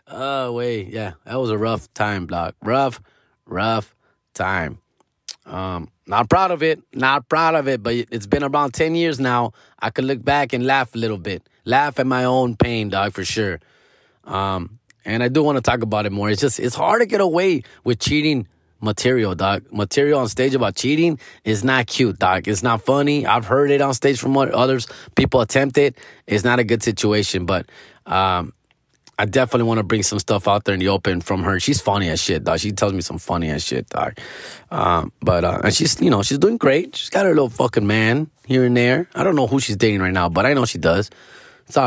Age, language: 20-39, English